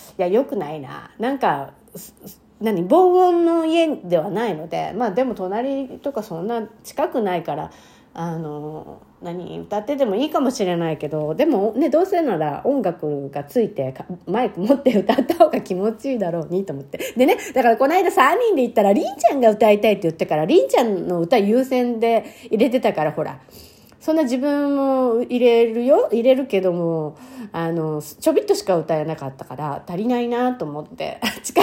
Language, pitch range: Japanese, 170-260 Hz